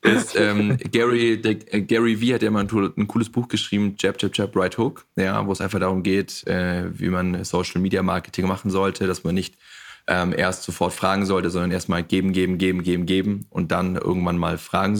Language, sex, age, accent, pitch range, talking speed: German, male, 20-39, German, 90-100 Hz, 210 wpm